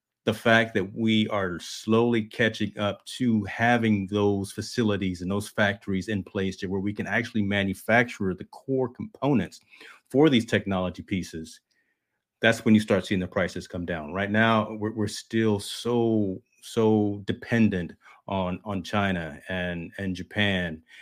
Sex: male